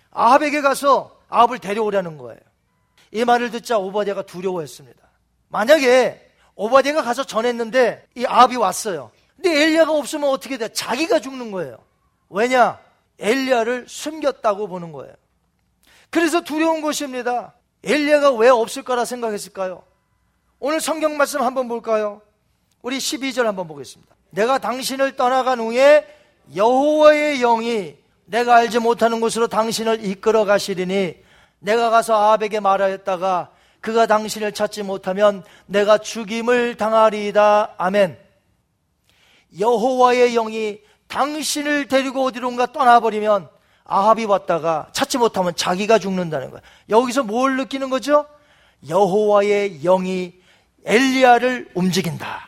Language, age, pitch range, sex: Korean, 40-59, 205-270 Hz, male